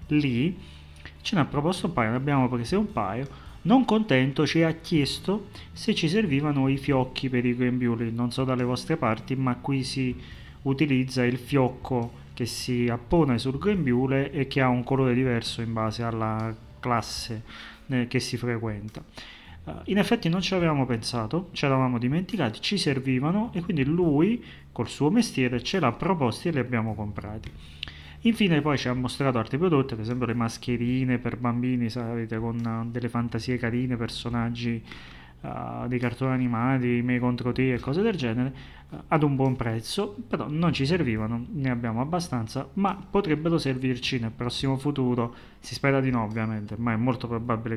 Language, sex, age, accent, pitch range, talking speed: Italian, male, 30-49, native, 115-140 Hz, 170 wpm